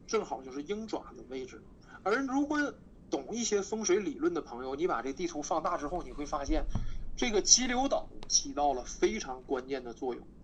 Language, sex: Chinese, male